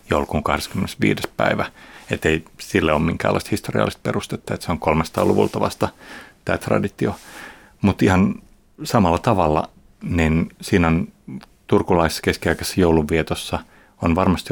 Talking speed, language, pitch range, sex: 125 wpm, Finnish, 85-100 Hz, male